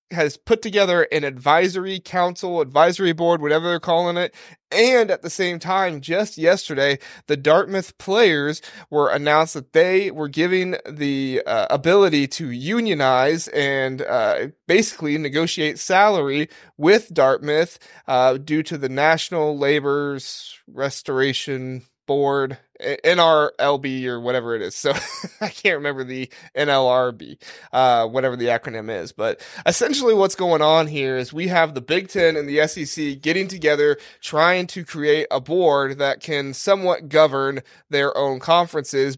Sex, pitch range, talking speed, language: male, 135-175 Hz, 140 wpm, English